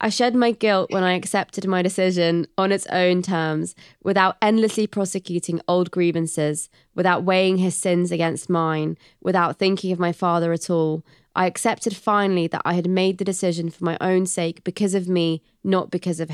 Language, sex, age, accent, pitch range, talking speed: English, female, 20-39, British, 165-185 Hz, 185 wpm